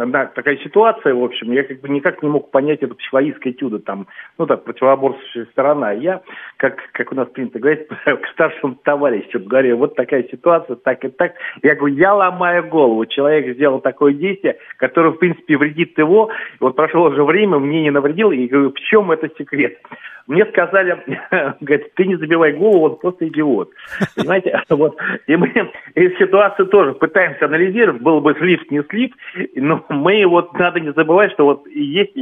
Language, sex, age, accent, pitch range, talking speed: Russian, male, 50-69, native, 135-175 Hz, 180 wpm